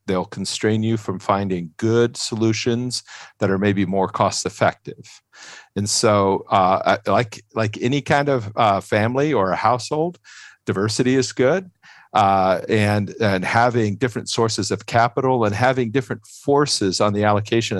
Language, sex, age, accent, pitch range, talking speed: English, male, 50-69, American, 100-120 Hz, 150 wpm